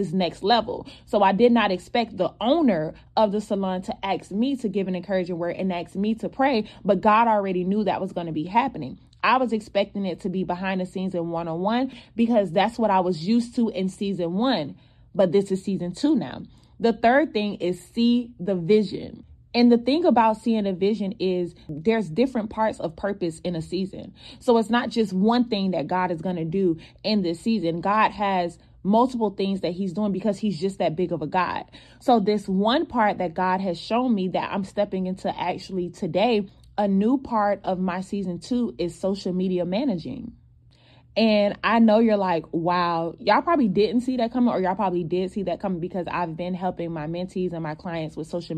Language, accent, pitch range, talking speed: English, American, 180-220 Hz, 215 wpm